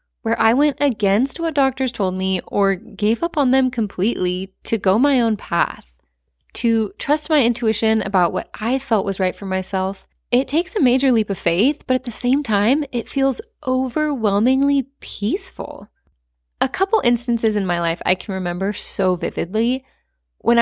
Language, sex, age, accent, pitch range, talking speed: English, female, 20-39, American, 195-255 Hz, 170 wpm